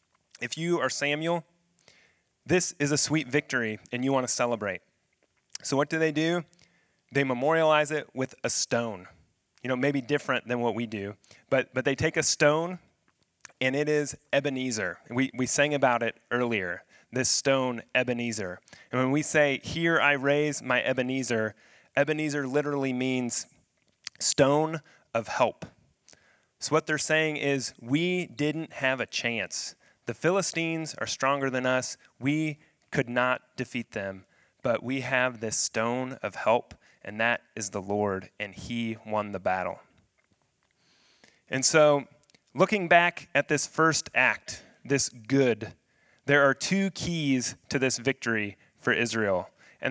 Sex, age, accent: male, 30-49, American